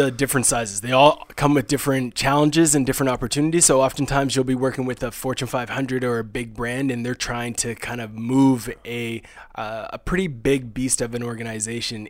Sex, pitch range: male, 115-135 Hz